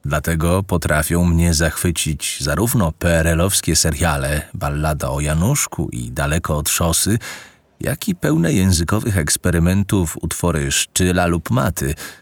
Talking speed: 120 wpm